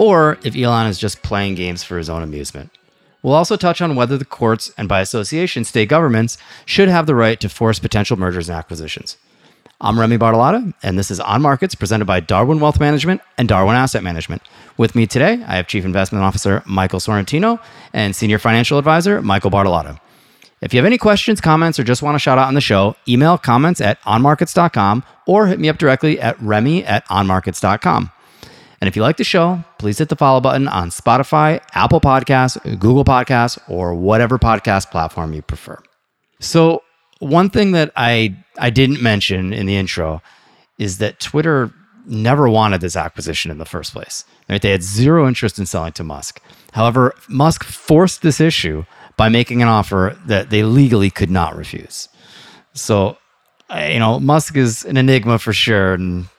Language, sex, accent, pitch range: English, male, American, 95-145 Hz